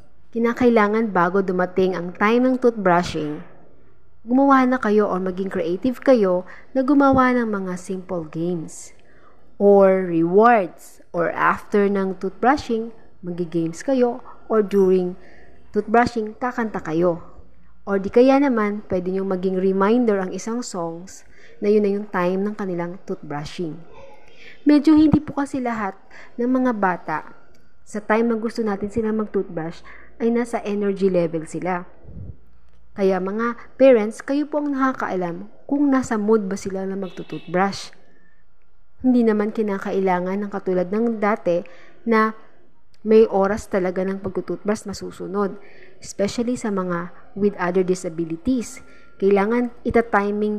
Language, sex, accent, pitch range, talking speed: Filipino, female, native, 180-230 Hz, 135 wpm